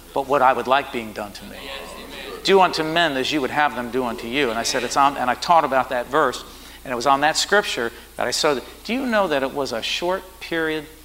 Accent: American